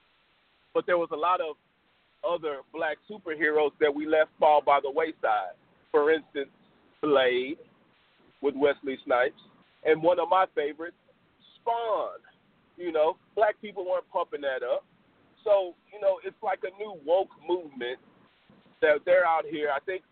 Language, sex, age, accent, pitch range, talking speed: English, male, 40-59, American, 155-230 Hz, 150 wpm